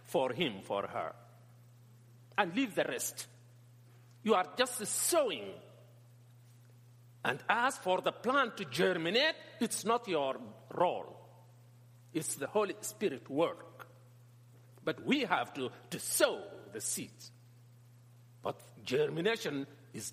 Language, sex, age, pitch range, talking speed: English, male, 50-69, 120-175 Hz, 115 wpm